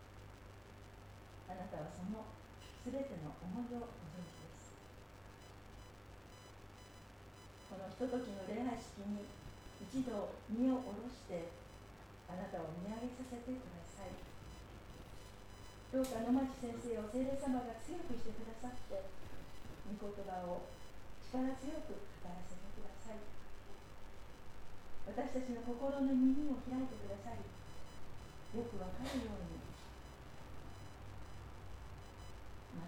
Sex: female